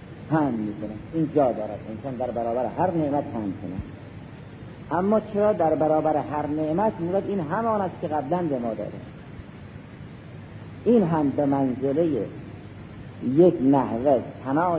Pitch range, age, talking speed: 115-170 Hz, 50-69, 135 wpm